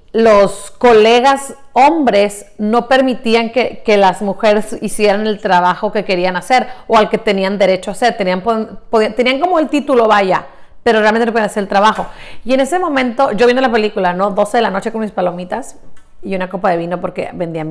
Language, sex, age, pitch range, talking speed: English, female, 30-49, 215-280 Hz, 205 wpm